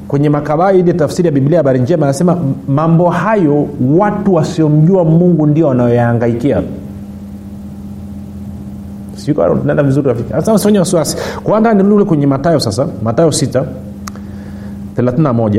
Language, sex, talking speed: Swahili, male, 110 wpm